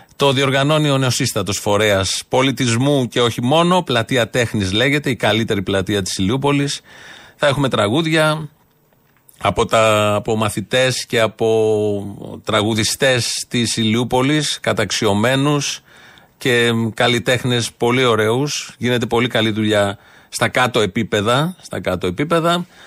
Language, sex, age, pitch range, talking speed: Greek, male, 40-59, 105-140 Hz, 115 wpm